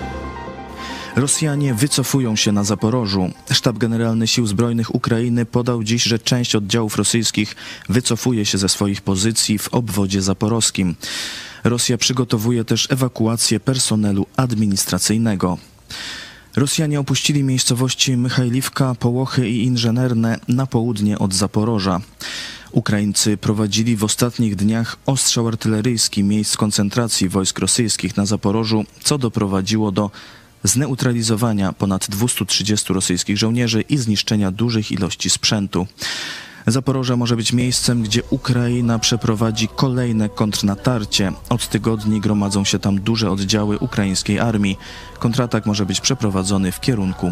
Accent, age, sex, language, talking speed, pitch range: native, 20-39, male, Polish, 115 wpm, 100-120 Hz